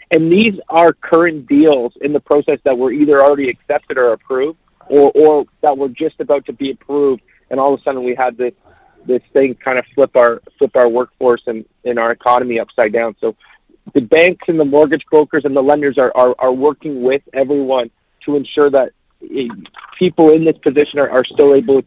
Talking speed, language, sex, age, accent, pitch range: 205 wpm, English, male, 40-59, American, 135-155 Hz